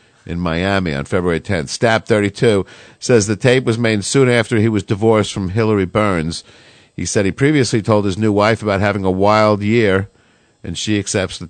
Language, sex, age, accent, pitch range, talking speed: English, male, 50-69, American, 95-110 Hz, 195 wpm